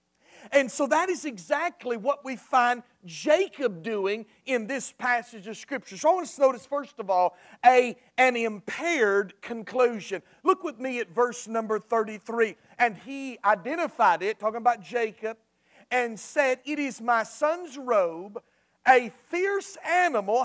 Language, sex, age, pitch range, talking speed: English, male, 40-59, 215-290 Hz, 155 wpm